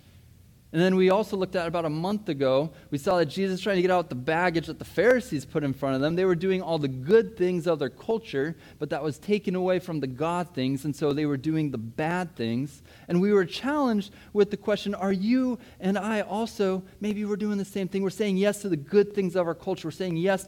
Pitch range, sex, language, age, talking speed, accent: 145-195 Hz, male, English, 30-49, 250 wpm, American